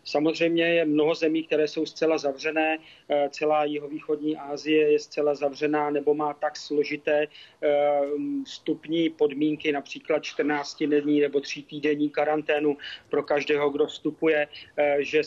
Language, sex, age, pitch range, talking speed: Czech, male, 40-59, 145-155 Hz, 120 wpm